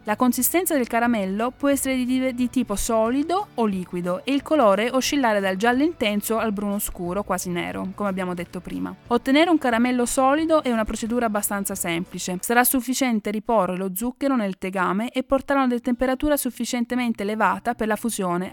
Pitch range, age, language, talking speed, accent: 200-260 Hz, 20-39, Italian, 175 wpm, native